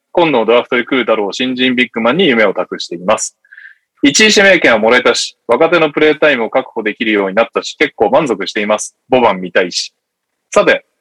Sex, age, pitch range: male, 20-39, 125-185 Hz